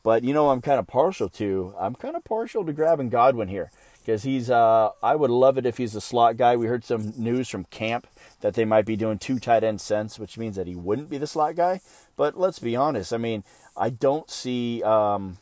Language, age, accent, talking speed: English, 40-59, American, 240 wpm